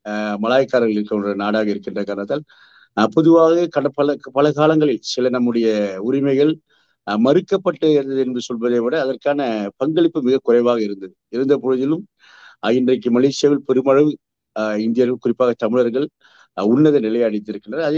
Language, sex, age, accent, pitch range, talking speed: Tamil, male, 50-69, native, 110-140 Hz, 110 wpm